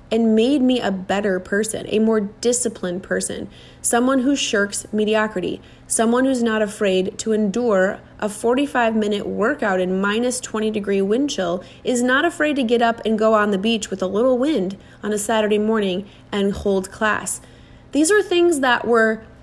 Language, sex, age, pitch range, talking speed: English, female, 30-49, 205-255 Hz, 175 wpm